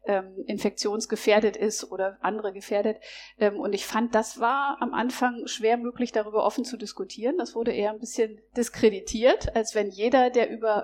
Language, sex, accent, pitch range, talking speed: German, female, German, 205-245 Hz, 160 wpm